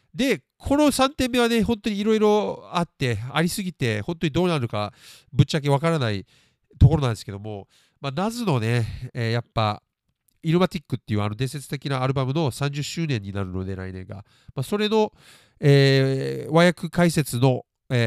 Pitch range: 115-165 Hz